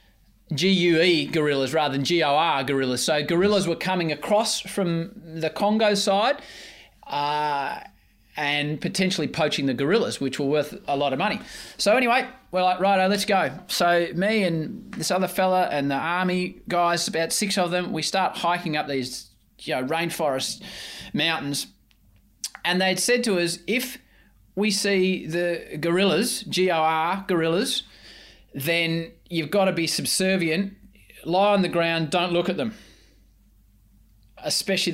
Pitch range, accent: 160-210 Hz, Australian